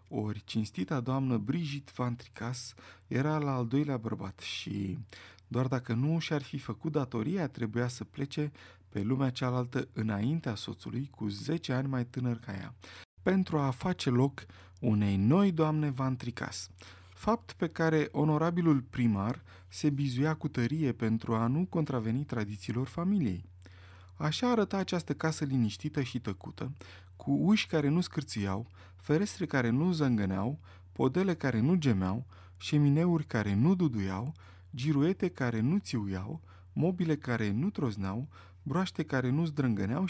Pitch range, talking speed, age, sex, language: 100-150 Hz, 140 wpm, 30-49, male, Romanian